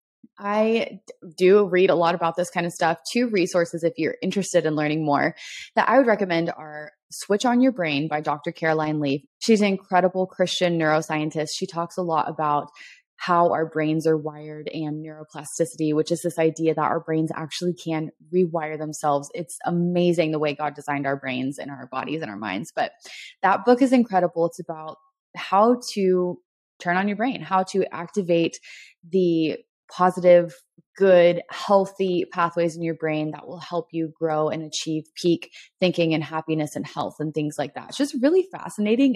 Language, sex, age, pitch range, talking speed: English, female, 20-39, 155-200 Hz, 180 wpm